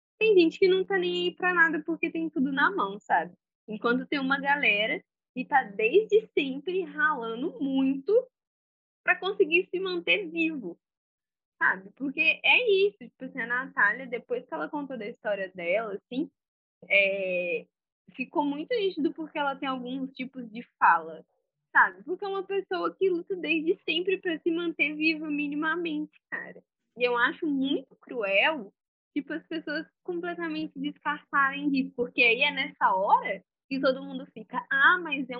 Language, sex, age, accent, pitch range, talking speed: Portuguese, female, 10-29, Brazilian, 240-335 Hz, 160 wpm